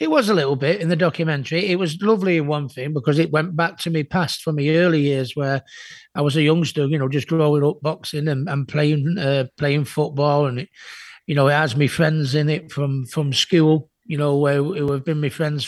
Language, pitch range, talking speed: English, 145-160 Hz, 235 wpm